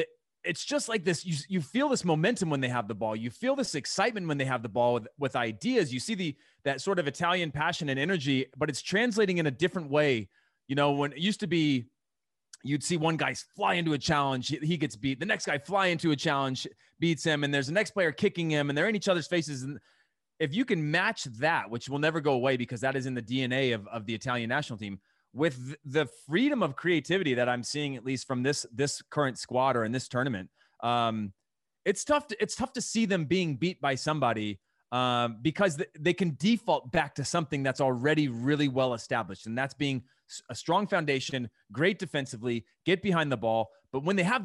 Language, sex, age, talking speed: English, male, 30-49, 225 wpm